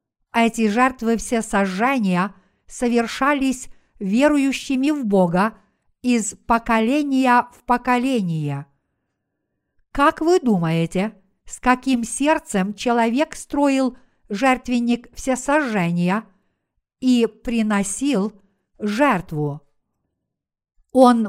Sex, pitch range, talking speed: female, 205-255 Hz, 75 wpm